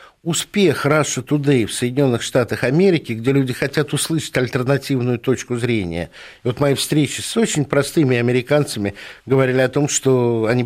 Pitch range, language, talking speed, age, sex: 115-145 Hz, Russian, 150 wpm, 60-79, male